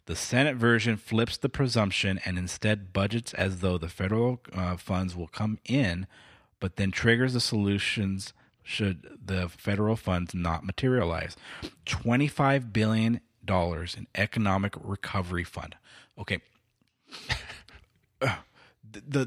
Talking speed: 115 wpm